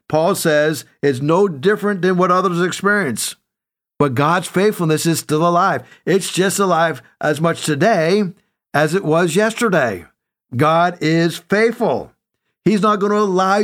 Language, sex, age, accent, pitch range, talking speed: English, male, 50-69, American, 145-190 Hz, 145 wpm